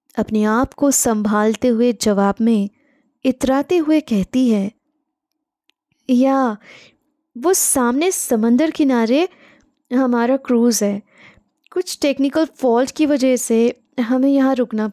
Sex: female